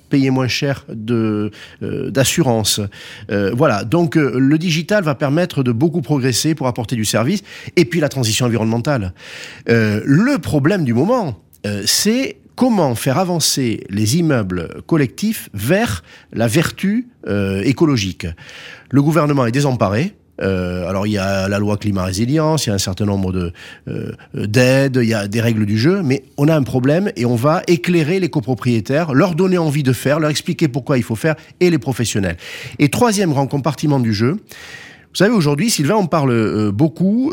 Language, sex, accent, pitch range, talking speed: French, male, French, 115-165 Hz, 175 wpm